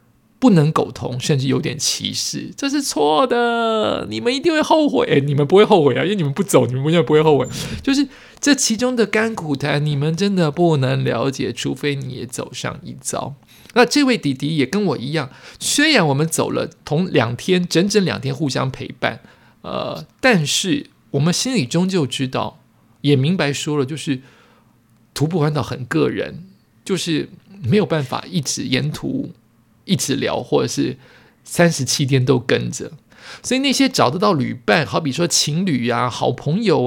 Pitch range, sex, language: 135-195 Hz, male, Chinese